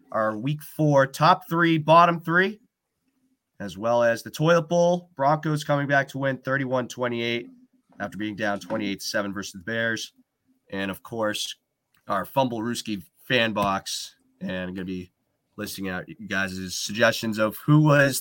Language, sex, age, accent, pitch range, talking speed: English, male, 30-49, American, 110-155 Hz, 155 wpm